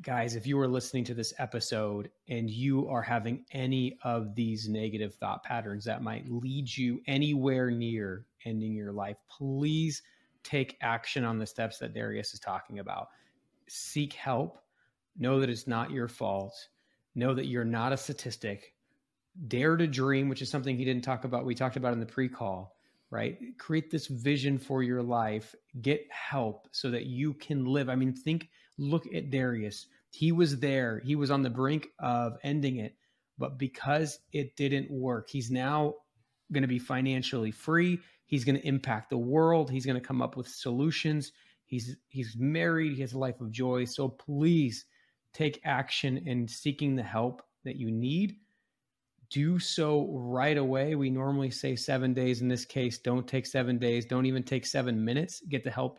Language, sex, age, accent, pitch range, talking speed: English, male, 30-49, American, 120-140 Hz, 180 wpm